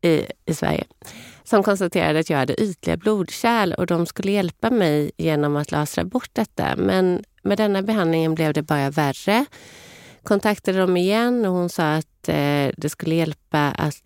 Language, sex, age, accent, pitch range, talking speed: Swedish, female, 30-49, native, 155-195 Hz, 165 wpm